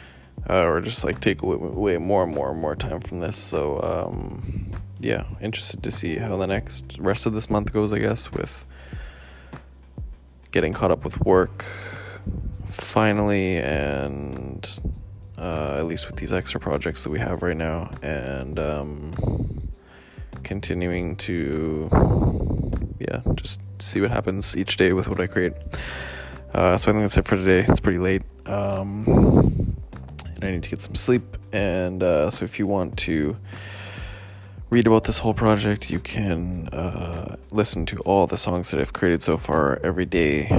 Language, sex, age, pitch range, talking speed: English, male, 20-39, 75-100 Hz, 165 wpm